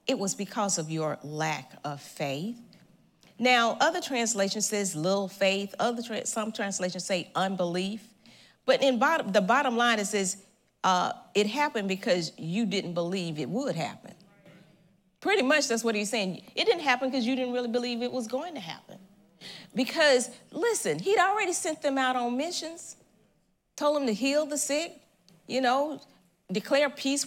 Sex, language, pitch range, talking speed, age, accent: female, English, 195-290 Hz, 165 wpm, 40-59, American